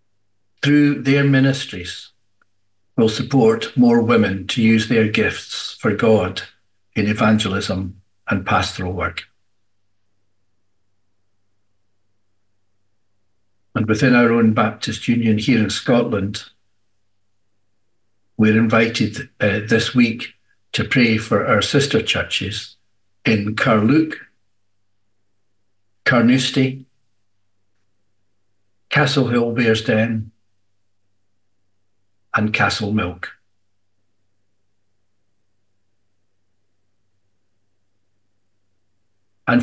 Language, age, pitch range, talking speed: English, 60-79, 100-110 Hz, 75 wpm